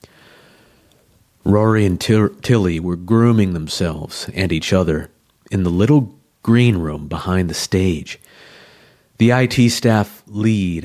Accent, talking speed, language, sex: American, 115 wpm, English, male